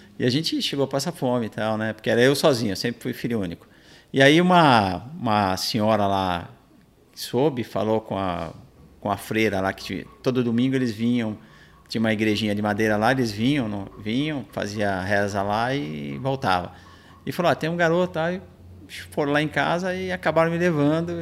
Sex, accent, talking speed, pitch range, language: male, Brazilian, 195 wpm, 105-145 Hz, Portuguese